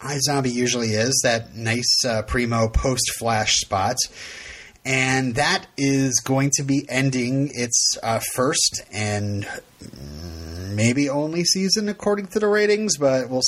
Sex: male